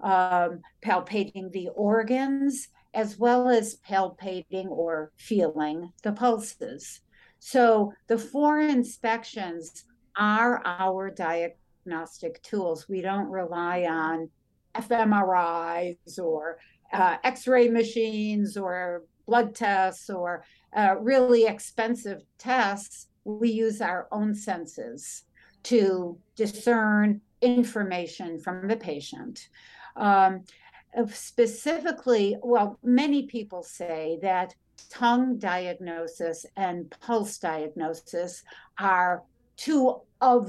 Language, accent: English, American